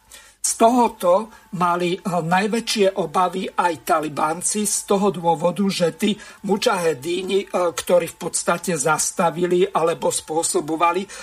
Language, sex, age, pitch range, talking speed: Slovak, male, 50-69, 170-195 Hz, 105 wpm